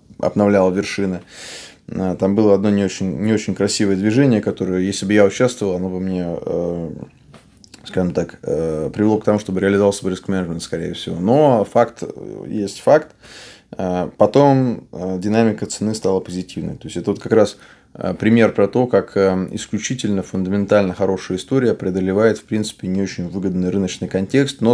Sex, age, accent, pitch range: male, 20-39, native, 95-110 Hz